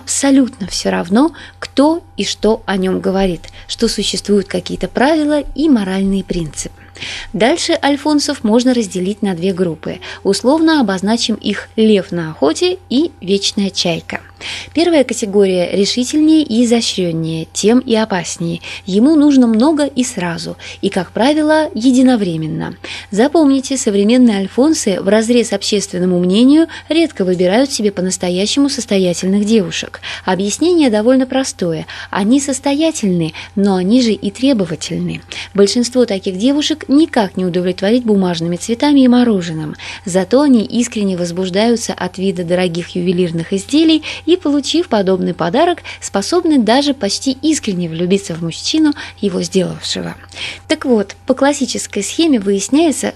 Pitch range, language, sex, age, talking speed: 185-265 Hz, Russian, female, 20-39, 125 wpm